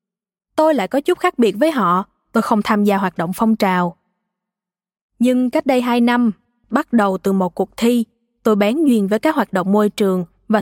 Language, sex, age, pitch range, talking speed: Vietnamese, female, 20-39, 195-255 Hz, 210 wpm